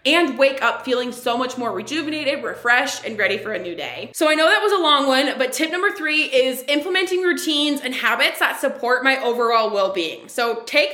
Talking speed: 215 wpm